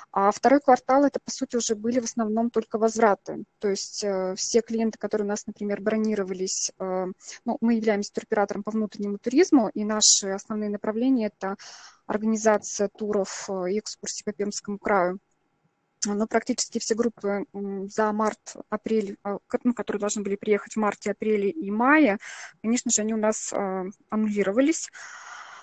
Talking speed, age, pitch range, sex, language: 150 wpm, 20-39, 205-235 Hz, female, Russian